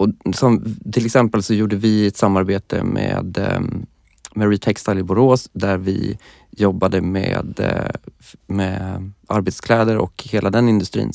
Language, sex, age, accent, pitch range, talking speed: Swedish, male, 20-39, native, 95-110 Hz, 130 wpm